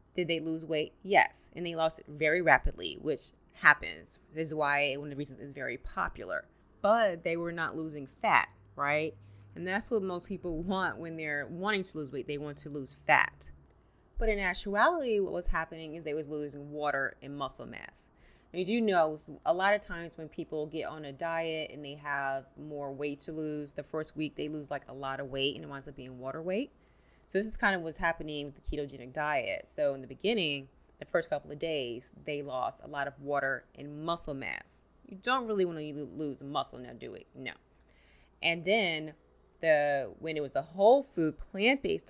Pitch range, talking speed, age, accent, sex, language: 145-175 Hz, 210 wpm, 30-49, American, female, English